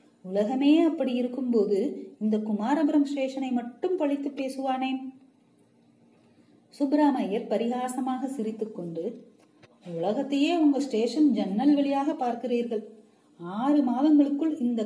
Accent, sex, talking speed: native, female, 95 wpm